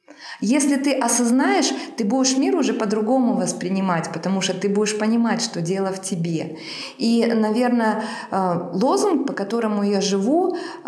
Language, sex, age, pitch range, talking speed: Russian, female, 20-39, 190-245 Hz, 140 wpm